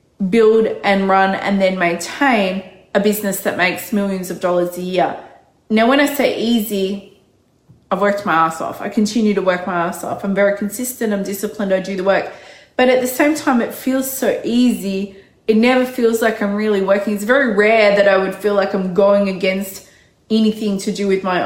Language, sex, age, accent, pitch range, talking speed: English, female, 20-39, Australian, 180-210 Hz, 205 wpm